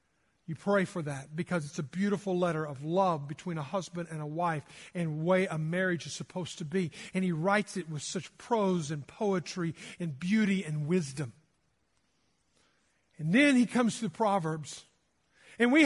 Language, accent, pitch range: English, American, 185-260 Hz